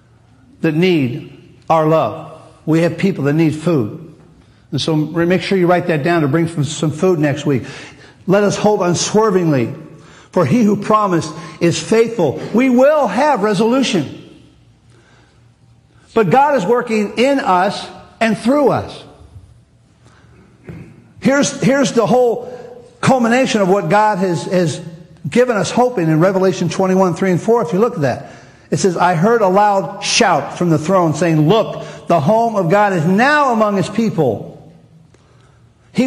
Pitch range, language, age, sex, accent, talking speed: 155-220 Hz, English, 50-69, male, American, 155 wpm